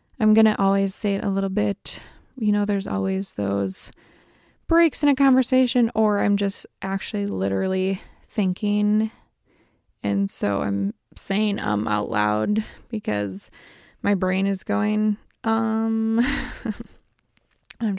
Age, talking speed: 20-39, 125 wpm